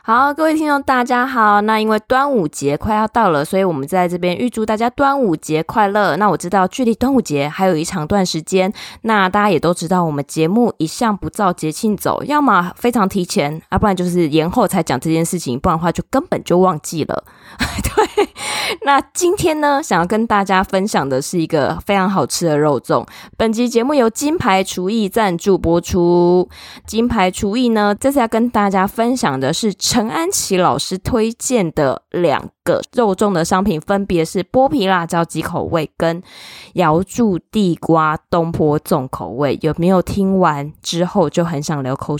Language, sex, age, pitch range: Chinese, female, 20-39, 165-220 Hz